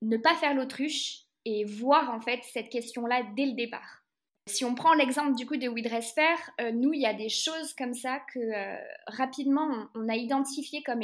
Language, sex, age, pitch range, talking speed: French, female, 20-39, 230-280 Hz, 215 wpm